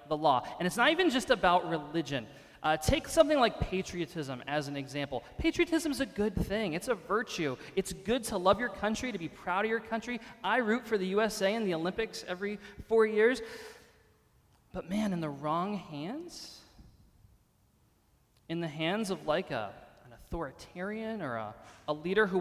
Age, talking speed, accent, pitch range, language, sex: 20-39, 175 wpm, American, 145-200 Hz, English, male